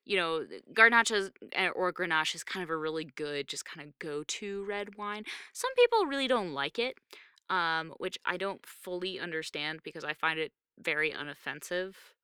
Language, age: English, 20-39